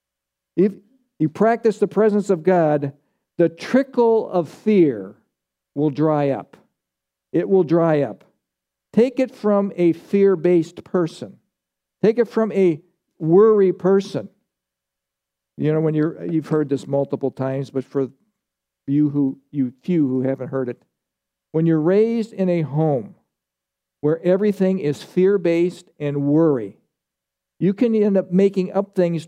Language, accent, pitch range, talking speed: English, American, 140-185 Hz, 140 wpm